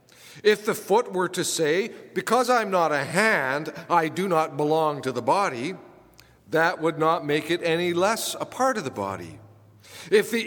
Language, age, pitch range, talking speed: English, 50-69, 140-195 Hz, 185 wpm